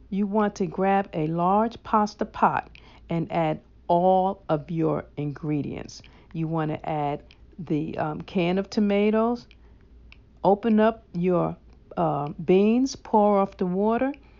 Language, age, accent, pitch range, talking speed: English, 50-69, American, 175-235 Hz, 130 wpm